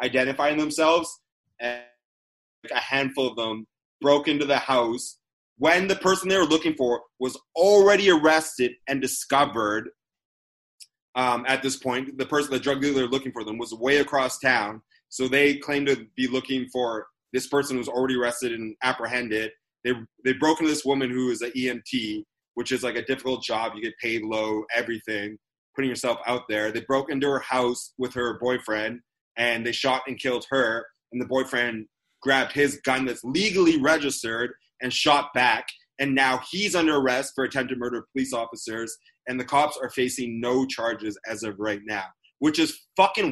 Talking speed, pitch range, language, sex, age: 180 wpm, 115-140 Hz, English, male, 30-49